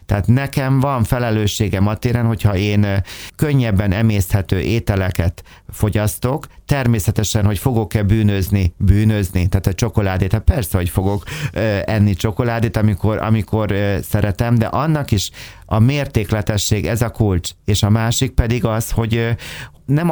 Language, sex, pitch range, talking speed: Hungarian, male, 100-120 Hz, 130 wpm